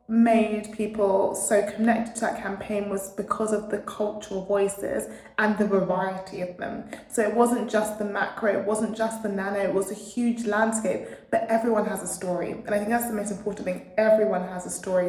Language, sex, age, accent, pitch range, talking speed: English, female, 20-39, British, 195-225 Hz, 205 wpm